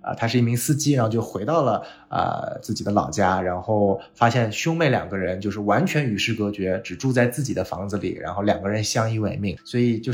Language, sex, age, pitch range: Chinese, male, 20-39, 105-130 Hz